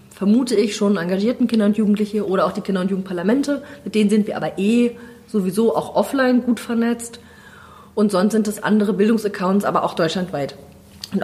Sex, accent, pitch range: female, German, 190-220 Hz